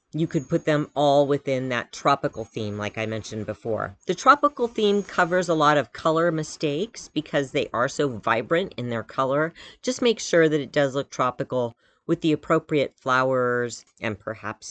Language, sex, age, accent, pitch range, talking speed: English, female, 40-59, American, 125-165 Hz, 180 wpm